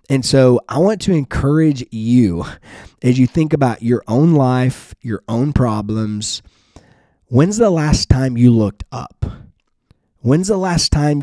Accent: American